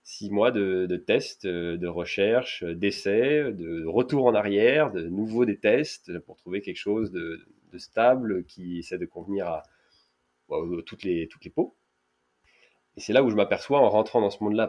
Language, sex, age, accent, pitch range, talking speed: French, male, 30-49, French, 90-125 Hz, 185 wpm